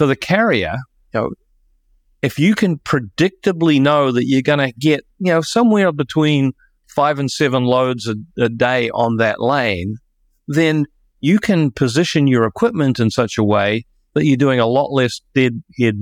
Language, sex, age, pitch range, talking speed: English, male, 50-69, 115-145 Hz, 170 wpm